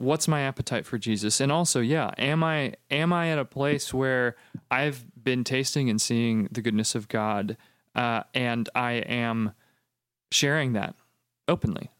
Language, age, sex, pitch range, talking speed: English, 30-49, male, 115-145 Hz, 160 wpm